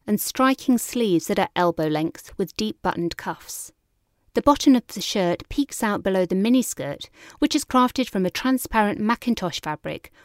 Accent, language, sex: British, English, female